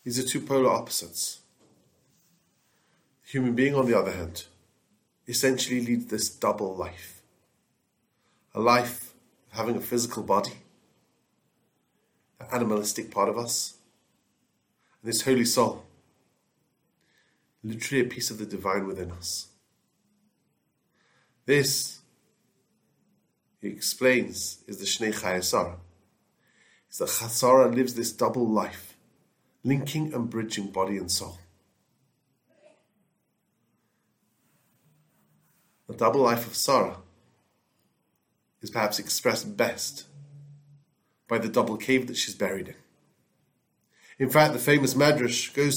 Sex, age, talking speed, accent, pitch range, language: male, 40-59, 110 wpm, Irish, 110-145 Hz, English